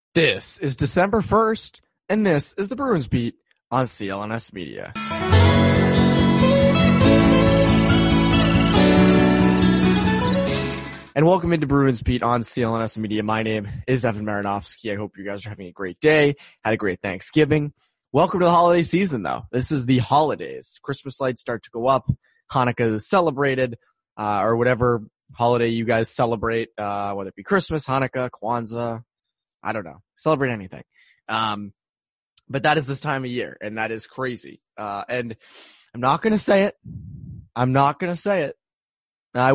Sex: male